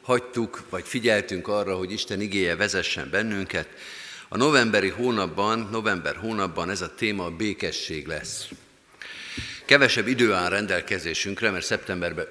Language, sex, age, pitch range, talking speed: Hungarian, male, 50-69, 90-110 Hz, 125 wpm